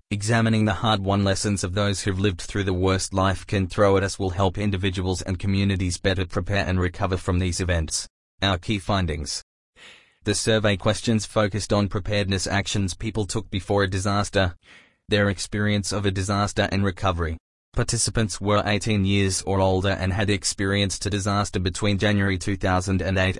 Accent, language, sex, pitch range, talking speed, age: Australian, English, male, 95-105 Hz, 165 wpm, 20-39